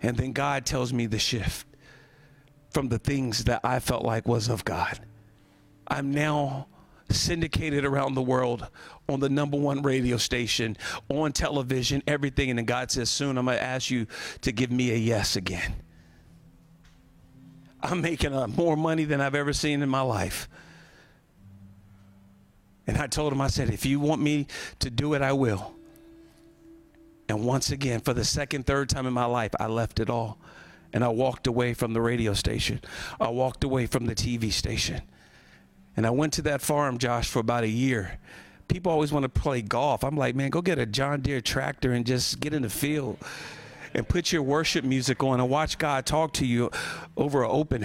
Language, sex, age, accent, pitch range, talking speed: English, male, 50-69, American, 115-150 Hz, 190 wpm